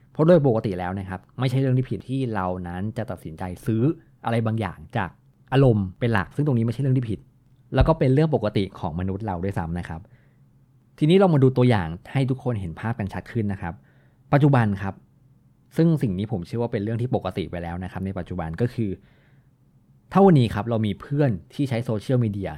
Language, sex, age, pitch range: Thai, male, 20-39, 95-130 Hz